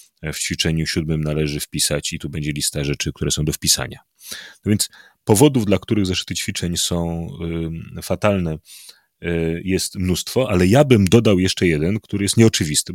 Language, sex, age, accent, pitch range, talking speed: Polish, male, 30-49, native, 85-110 Hz, 160 wpm